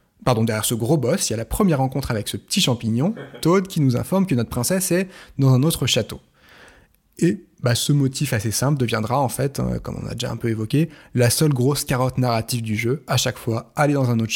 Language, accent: French, French